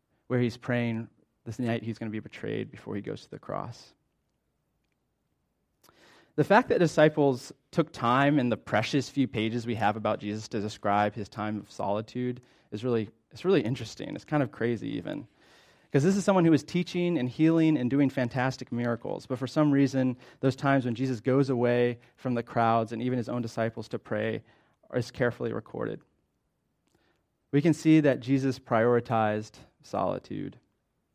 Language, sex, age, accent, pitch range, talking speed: English, male, 30-49, American, 110-135 Hz, 175 wpm